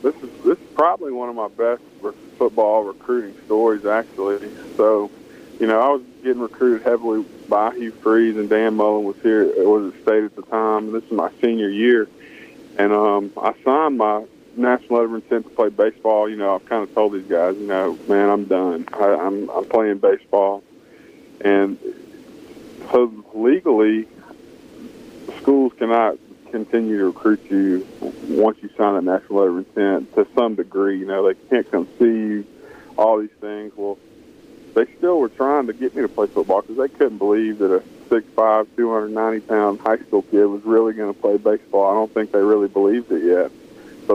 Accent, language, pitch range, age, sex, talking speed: American, English, 100-115 Hz, 20-39, male, 190 wpm